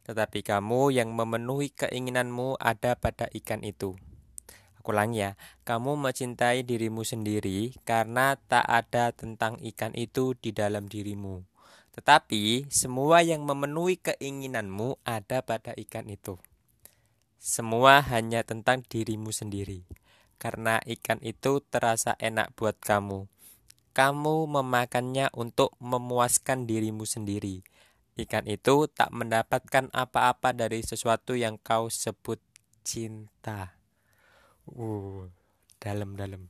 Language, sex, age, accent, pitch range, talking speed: Indonesian, male, 20-39, native, 105-120 Hz, 105 wpm